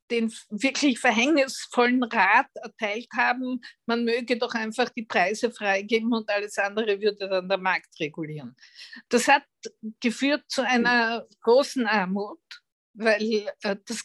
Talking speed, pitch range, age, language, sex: 130 wpm, 220-255 Hz, 50-69, German, female